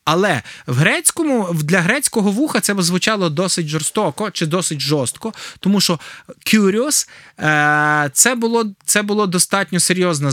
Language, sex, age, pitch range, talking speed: Ukrainian, male, 20-39, 165-230 Hz, 130 wpm